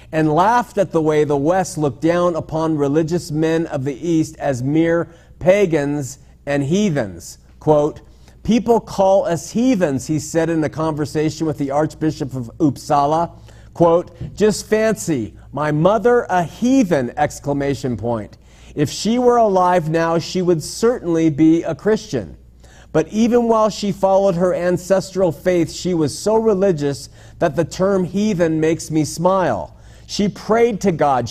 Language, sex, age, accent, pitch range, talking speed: English, male, 50-69, American, 140-175 Hz, 150 wpm